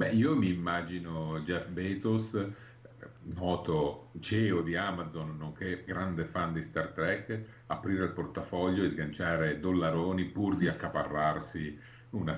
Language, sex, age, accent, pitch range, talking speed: Italian, male, 50-69, native, 80-100 Hz, 125 wpm